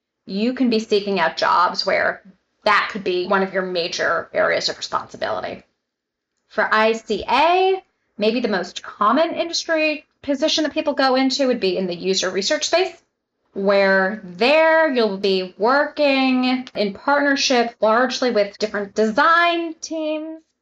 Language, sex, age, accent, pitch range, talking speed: English, female, 20-39, American, 200-280 Hz, 140 wpm